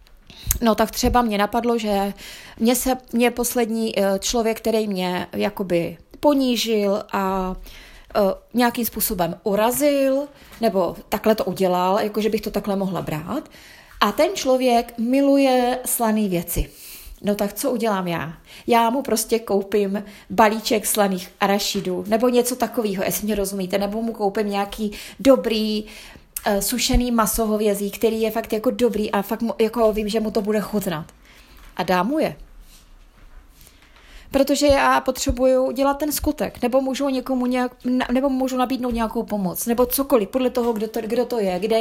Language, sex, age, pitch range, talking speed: Czech, female, 20-39, 200-245 Hz, 150 wpm